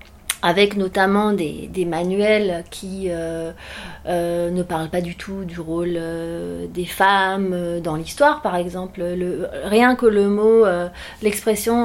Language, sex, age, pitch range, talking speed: French, female, 30-49, 180-225 Hz, 140 wpm